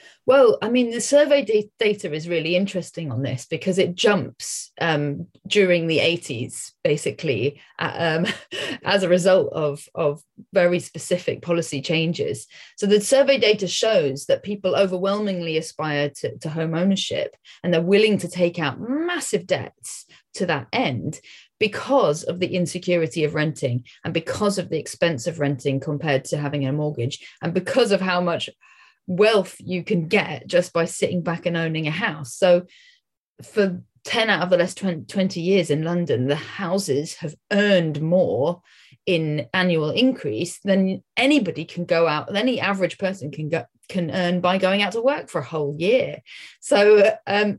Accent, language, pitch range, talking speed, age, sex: British, English, 155-200 Hz, 165 wpm, 30-49, female